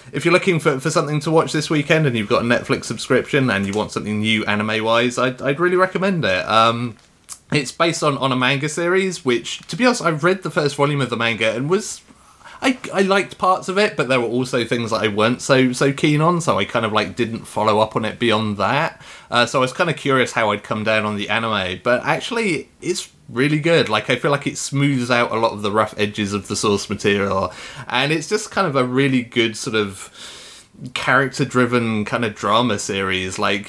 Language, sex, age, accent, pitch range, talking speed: English, male, 30-49, British, 105-140 Hz, 235 wpm